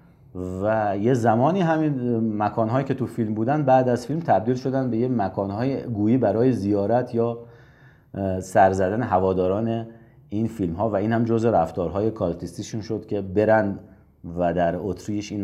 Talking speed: 155 wpm